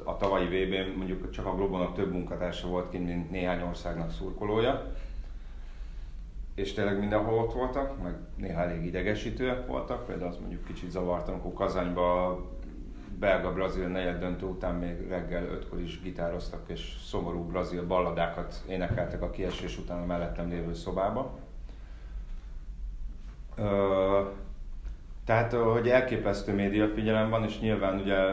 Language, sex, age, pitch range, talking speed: Hungarian, male, 30-49, 85-100 Hz, 135 wpm